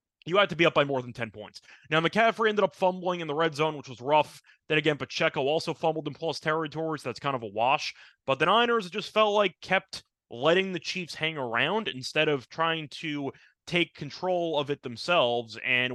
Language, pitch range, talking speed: English, 135-180 Hz, 220 wpm